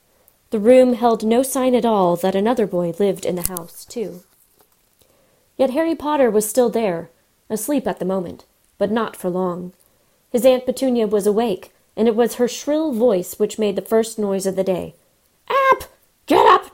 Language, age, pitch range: English, 30-49, 190-250 Hz